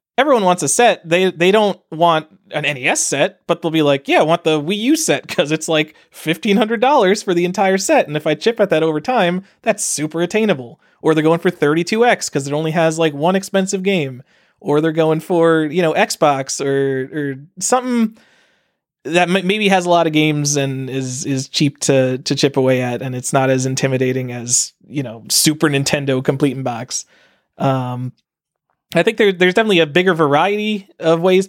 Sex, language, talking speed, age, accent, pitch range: male, English, 200 wpm, 20-39, American, 140-190 Hz